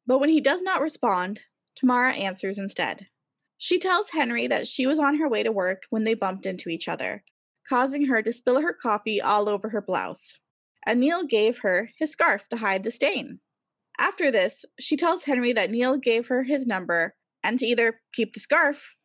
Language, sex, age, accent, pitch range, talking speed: English, female, 20-39, American, 210-280 Hz, 200 wpm